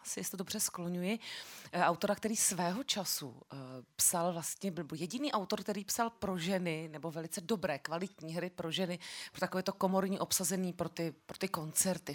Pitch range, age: 155-200 Hz, 30-49